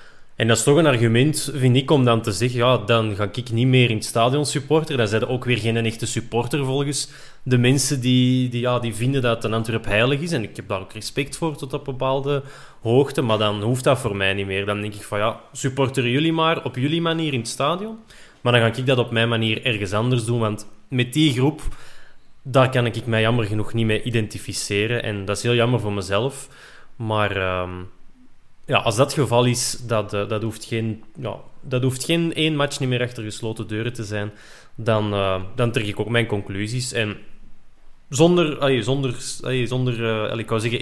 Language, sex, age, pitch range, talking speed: Dutch, male, 20-39, 105-135 Hz, 225 wpm